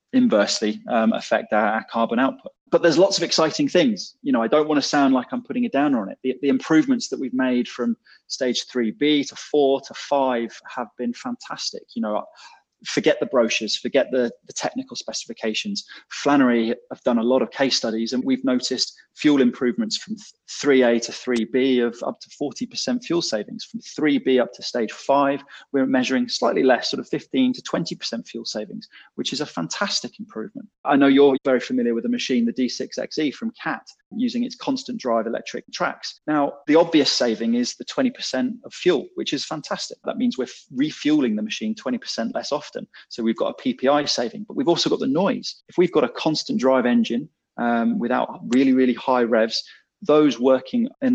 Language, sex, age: English, male, 20-39